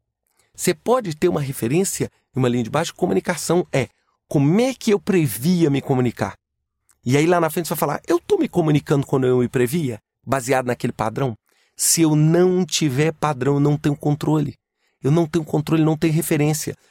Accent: Brazilian